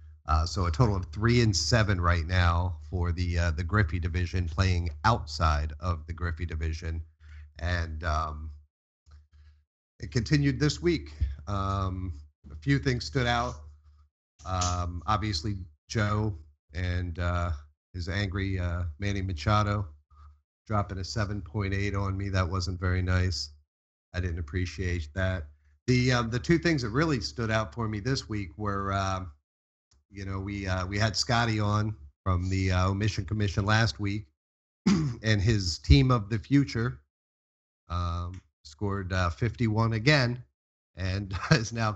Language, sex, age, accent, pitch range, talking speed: English, male, 40-59, American, 80-105 Hz, 145 wpm